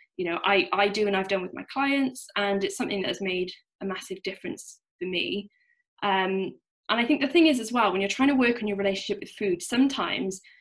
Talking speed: 240 wpm